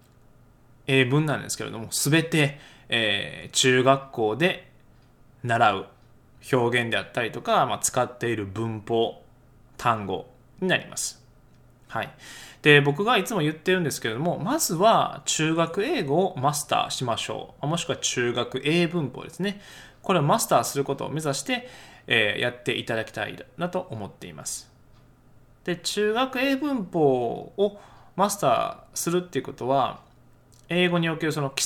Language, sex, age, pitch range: Japanese, male, 20-39, 120-170 Hz